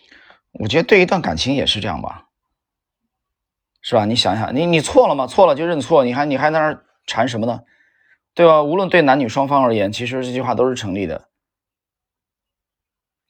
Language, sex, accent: Chinese, male, native